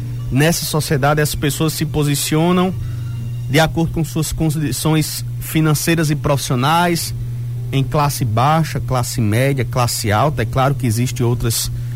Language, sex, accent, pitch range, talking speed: Portuguese, male, Brazilian, 120-160 Hz, 130 wpm